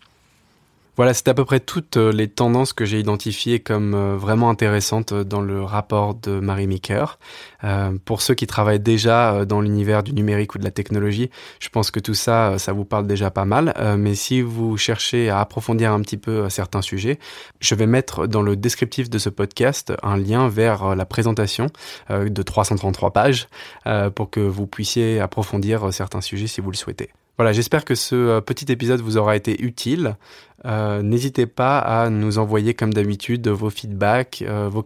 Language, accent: French, French